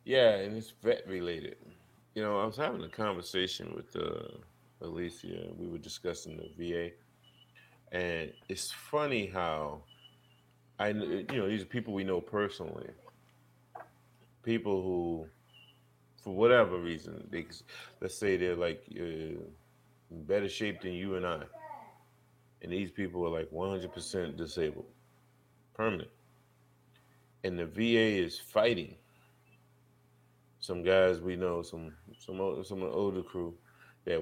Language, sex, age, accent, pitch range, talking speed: English, male, 30-49, American, 80-100 Hz, 130 wpm